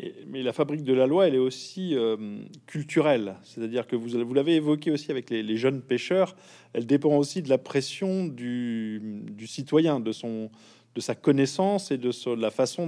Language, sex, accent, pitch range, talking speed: French, male, French, 115-155 Hz, 200 wpm